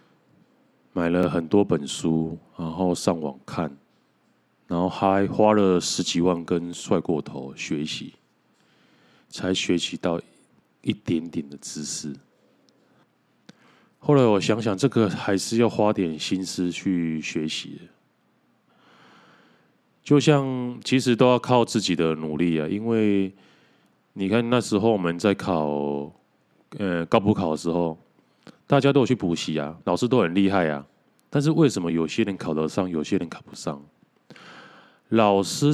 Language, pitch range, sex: Chinese, 85-115 Hz, male